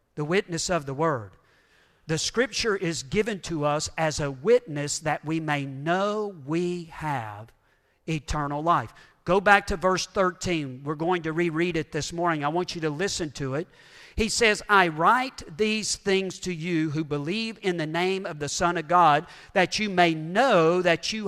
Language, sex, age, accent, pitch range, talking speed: English, male, 50-69, American, 170-255 Hz, 185 wpm